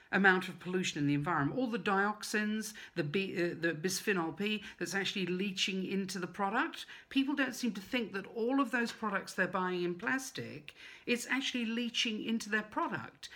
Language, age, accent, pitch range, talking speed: English, 50-69, British, 155-205 Hz, 185 wpm